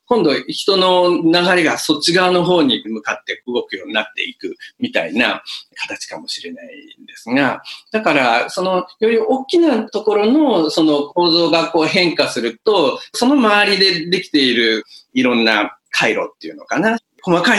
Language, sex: Japanese, male